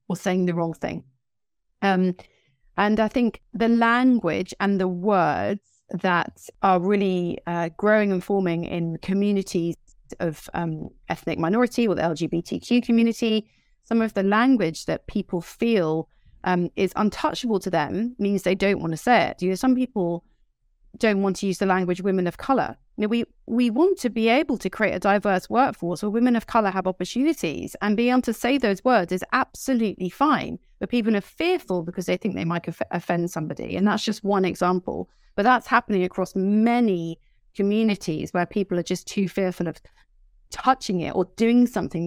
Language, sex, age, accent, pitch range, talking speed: English, female, 30-49, British, 170-220 Hz, 180 wpm